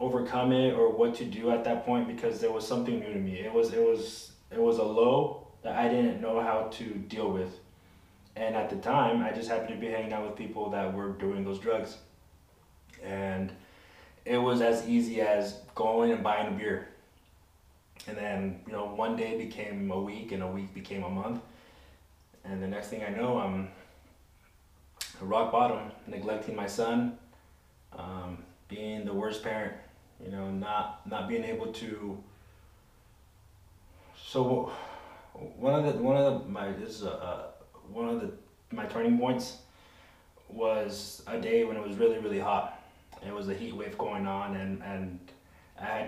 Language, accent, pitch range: English, American, 90-115 Hz